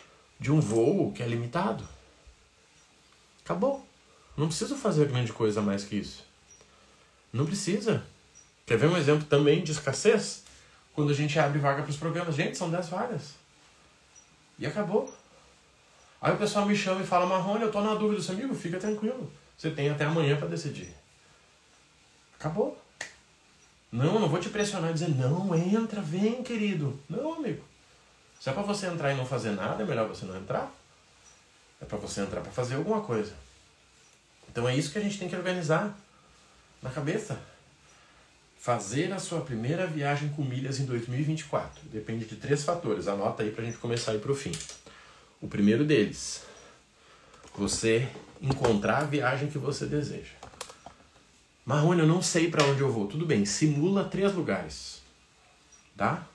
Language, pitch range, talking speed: Portuguese, 130-185 Hz, 165 wpm